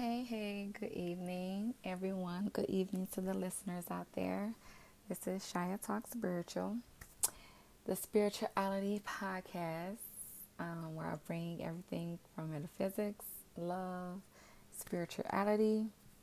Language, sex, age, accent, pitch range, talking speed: English, female, 20-39, American, 165-205 Hz, 105 wpm